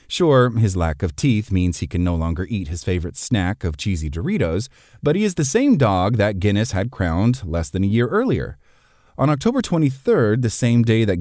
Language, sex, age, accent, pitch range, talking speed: English, male, 30-49, American, 95-130 Hz, 210 wpm